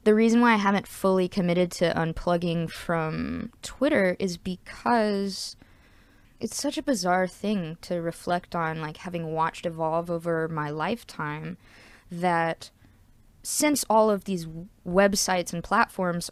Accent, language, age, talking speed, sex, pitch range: American, English, 20-39, 130 wpm, female, 165-205 Hz